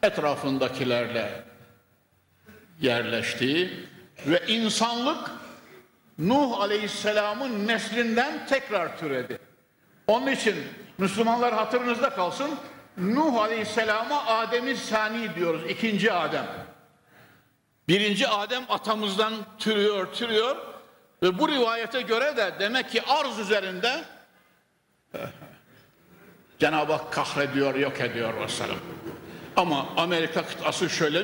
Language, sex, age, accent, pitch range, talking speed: Turkish, male, 60-79, native, 170-235 Hz, 85 wpm